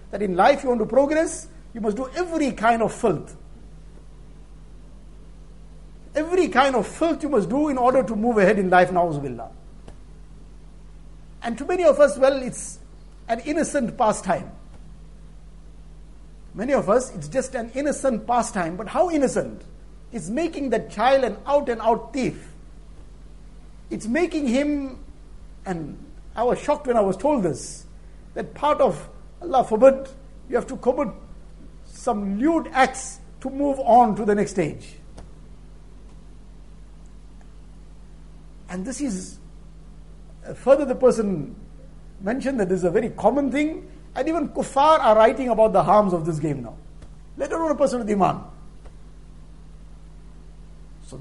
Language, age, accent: English, 60-79, Indian